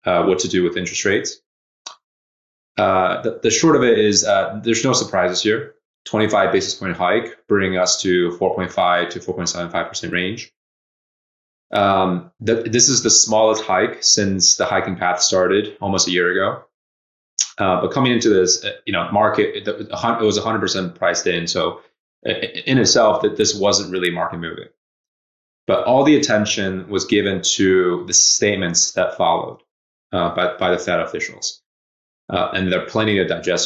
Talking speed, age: 165 wpm, 20-39